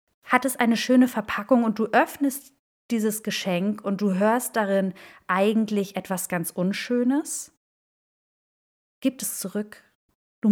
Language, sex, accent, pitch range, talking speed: German, female, German, 190-255 Hz, 125 wpm